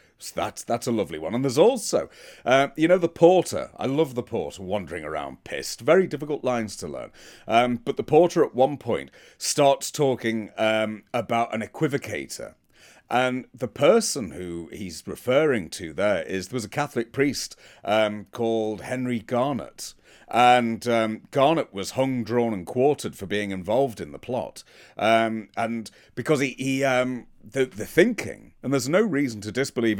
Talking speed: 170 wpm